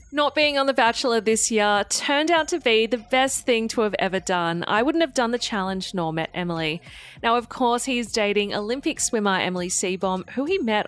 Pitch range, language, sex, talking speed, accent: 185-255 Hz, English, female, 220 wpm, Australian